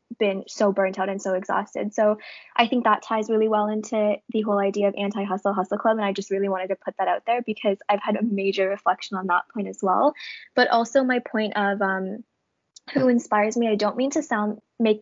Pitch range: 200-225 Hz